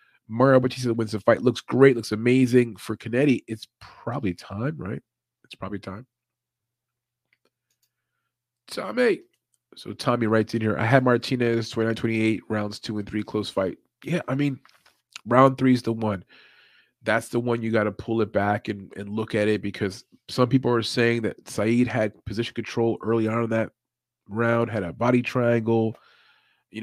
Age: 30-49